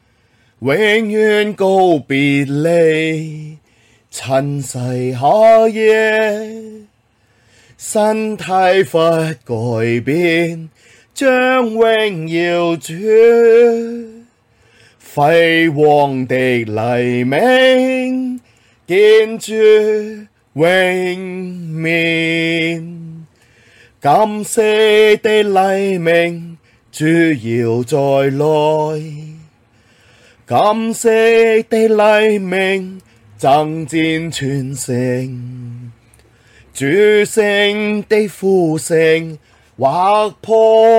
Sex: male